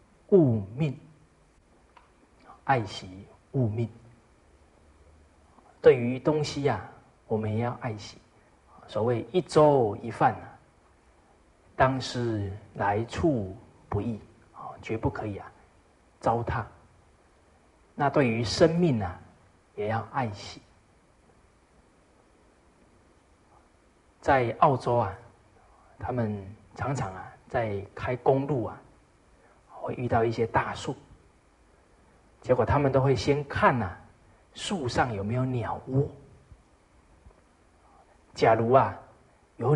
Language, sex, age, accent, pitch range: Chinese, male, 40-59, native, 95-125 Hz